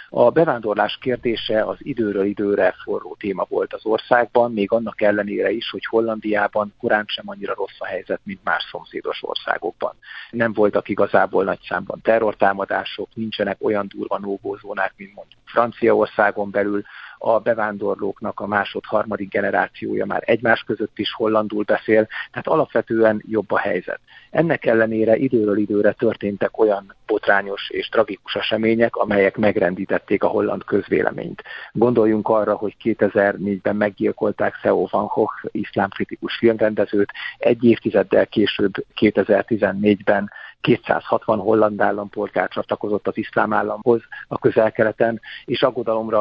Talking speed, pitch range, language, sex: 125 wpm, 100-115 Hz, Hungarian, male